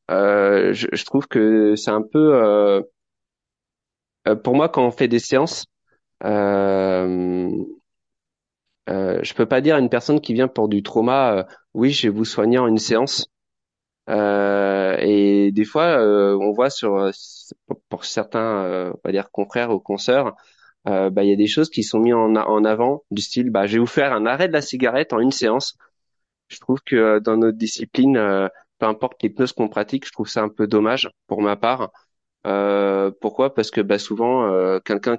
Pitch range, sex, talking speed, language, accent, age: 100-120 Hz, male, 195 wpm, French, French, 20-39